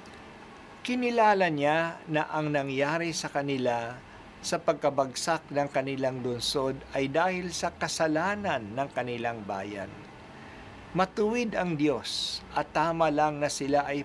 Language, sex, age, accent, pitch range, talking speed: Filipino, male, 50-69, native, 125-165 Hz, 120 wpm